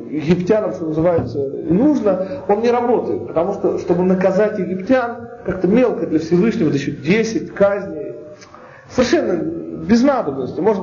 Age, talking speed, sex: 40-59, 125 wpm, male